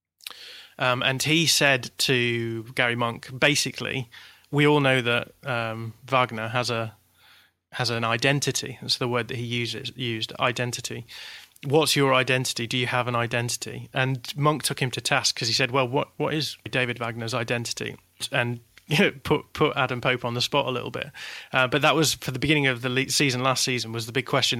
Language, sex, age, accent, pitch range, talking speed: English, male, 30-49, British, 120-135 Hz, 200 wpm